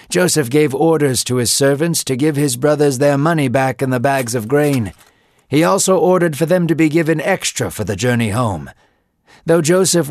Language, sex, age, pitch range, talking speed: English, male, 50-69, 115-160 Hz, 195 wpm